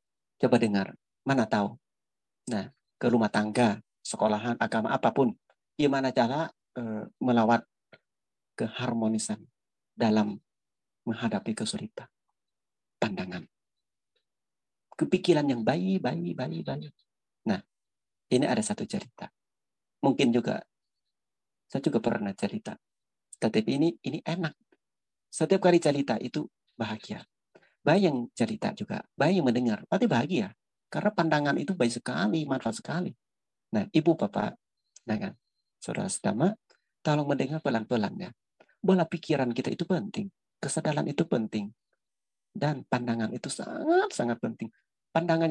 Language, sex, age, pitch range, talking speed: Indonesian, male, 40-59, 120-170 Hz, 110 wpm